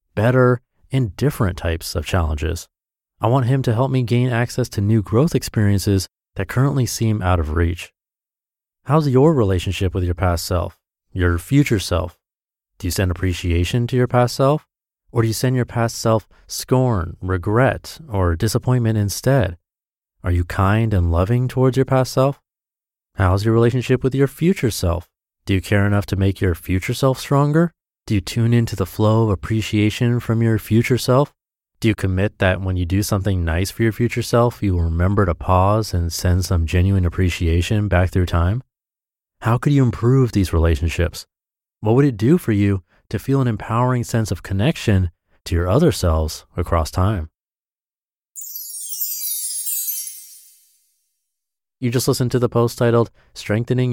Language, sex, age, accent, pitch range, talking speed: English, male, 30-49, American, 90-120 Hz, 170 wpm